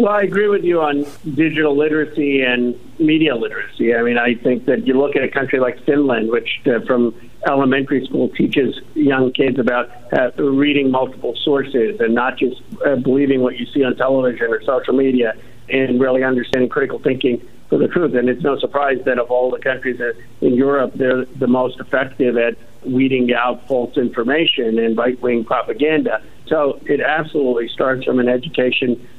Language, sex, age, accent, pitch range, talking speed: English, male, 50-69, American, 125-140 Hz, 180 wpm